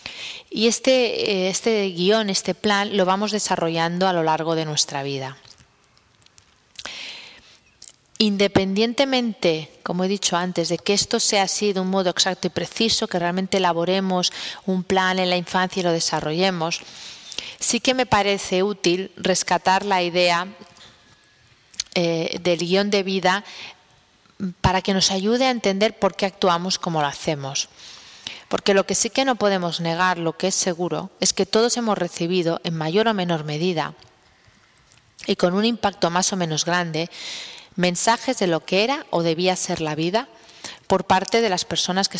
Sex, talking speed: female, 160 wpm